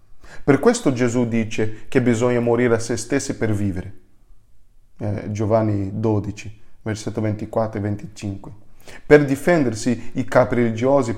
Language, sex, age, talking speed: Italian, male, 40-59, 130 wpm